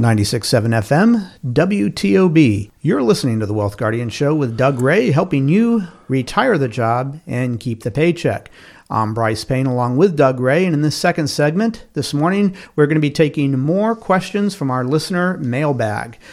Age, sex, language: 50-69, male, English